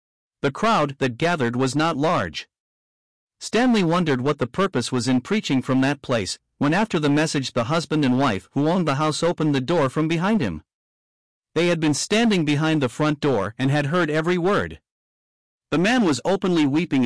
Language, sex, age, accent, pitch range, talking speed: English, male, 50-69, American, 130-170 Hz, 190 wpm